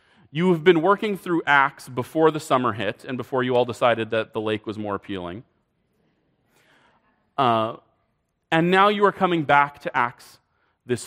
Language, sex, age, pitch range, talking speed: English, male, 30-49, 110-155 Hz, 170 wpm